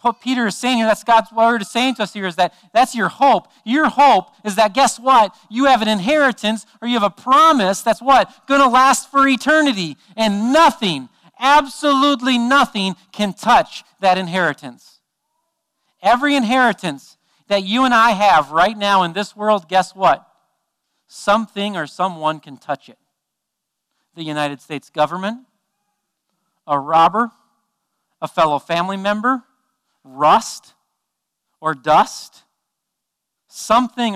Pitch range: 170-245 Hz